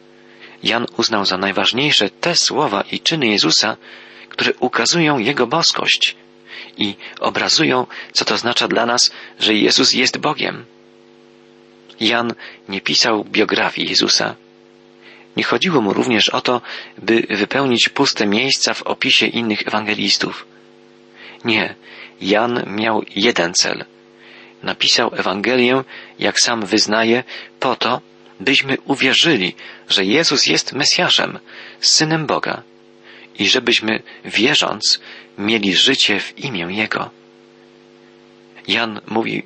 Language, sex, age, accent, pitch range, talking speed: Polish, male, 40-59, native, 95-120 Hz, 110 wpm